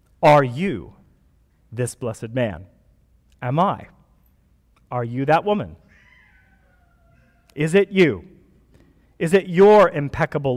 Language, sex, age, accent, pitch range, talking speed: English, male, 40-59, American, 125-165 Hz, 100 wpm